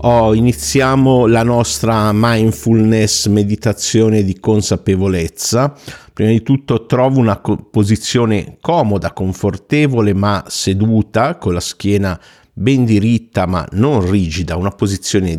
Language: Italian